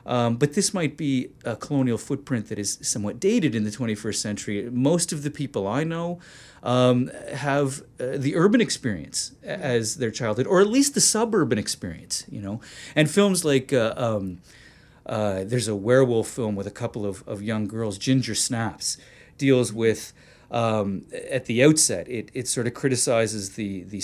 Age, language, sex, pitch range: 30-49, English, male, 105-140 Hz